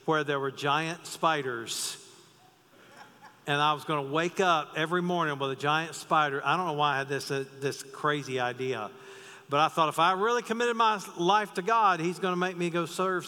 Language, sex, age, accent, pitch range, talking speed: English, male, 50-69, American, 140-185 Hz, 210 wpm